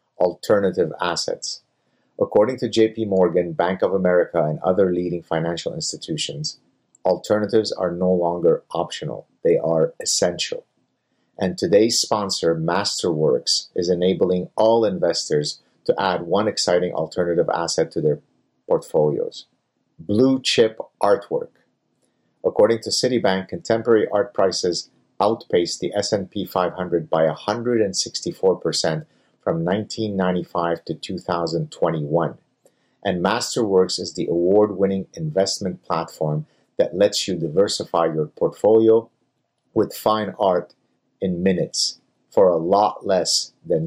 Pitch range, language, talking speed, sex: 85-110 Hz, English, 110 wpm, male